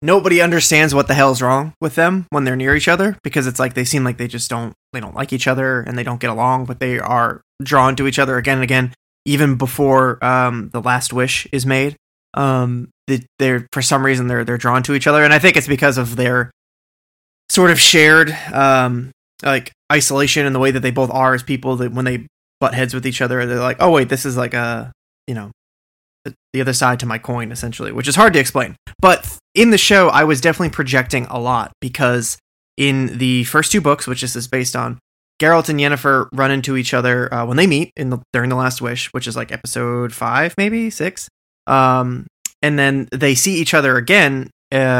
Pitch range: 125-145 Hz